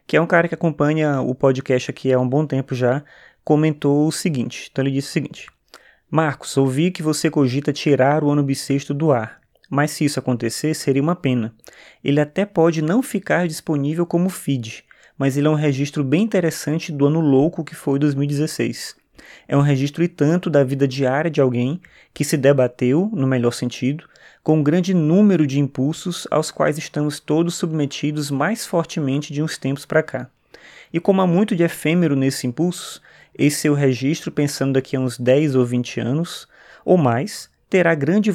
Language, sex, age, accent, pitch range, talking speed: Portuguese, male, 20-39, Brazilian, 135-160 Hz, 185 wpm